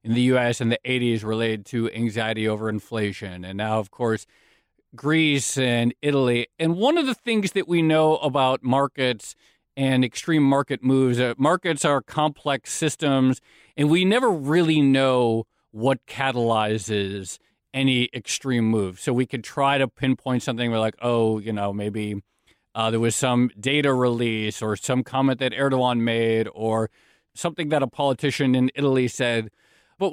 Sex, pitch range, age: male, 115-140 Hz, 40-59